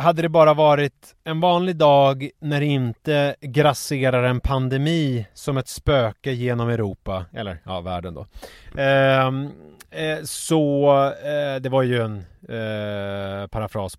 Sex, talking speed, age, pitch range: male, 115 wpm, 30-49, 115-145 Hz